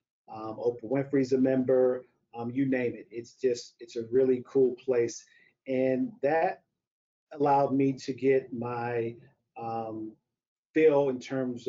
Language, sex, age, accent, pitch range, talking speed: English, male, 40-59, American, 120-135 Hz, 140 wpm